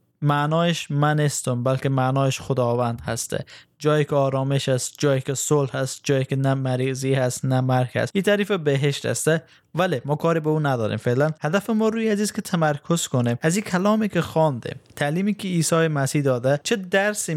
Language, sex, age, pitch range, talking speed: Persian, male, 20-39, 130-165 Hz, 180 wpm